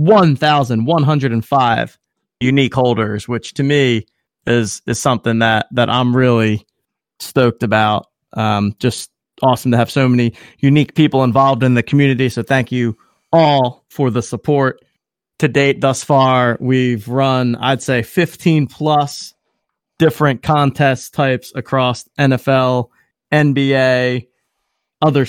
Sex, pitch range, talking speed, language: male, 120-145 Hz, 135 wpm, English